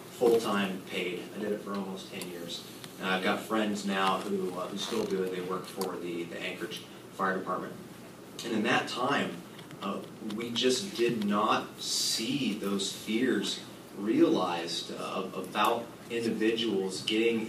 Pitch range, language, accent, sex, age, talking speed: 95-110 Hz, English, American, male, 30-49, 155 wpm